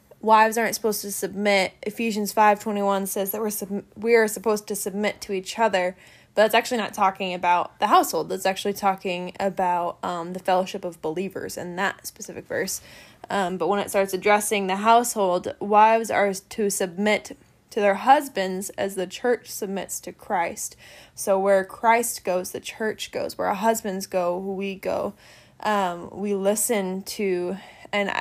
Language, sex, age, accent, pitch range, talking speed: English, female, 10-29, American, 185-220 Hz, 170 wpm